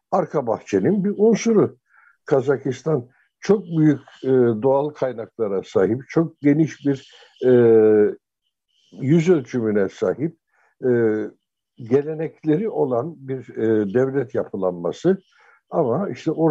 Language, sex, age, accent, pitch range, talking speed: Turkish, male, 60-79, native, 120-160 Hz, 85 wpm